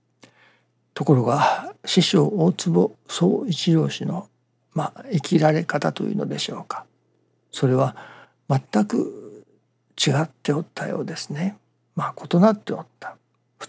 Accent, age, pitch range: native, 60-79, 130-190 Hz